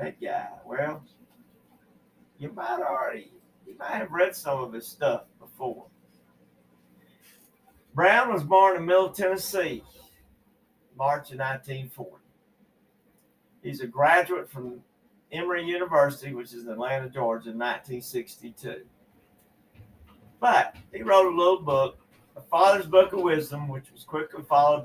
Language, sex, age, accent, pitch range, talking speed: English, male, 50-69, American, 125-160 Hz, 125 wpm